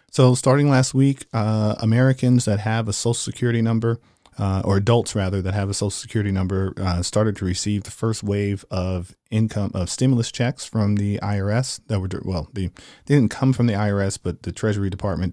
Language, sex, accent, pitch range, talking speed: English, male, American, 95-115 Hz, 195 wpm